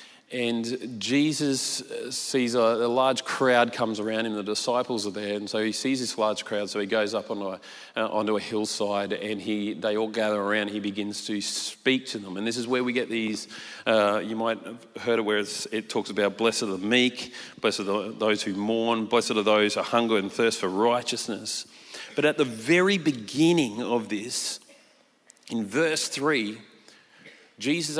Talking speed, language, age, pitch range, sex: 195 wpm, English, 40-59, 110-145 Hz, male